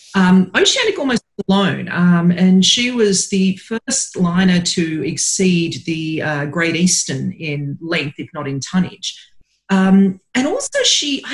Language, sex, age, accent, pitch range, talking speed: English, female, 40-59, Australian, 150-205 Hz, 145 wpm